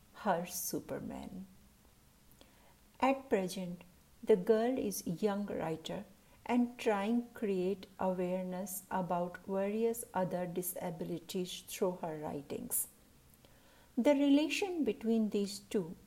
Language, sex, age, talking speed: Hindi, female, 60-79, 95 wpm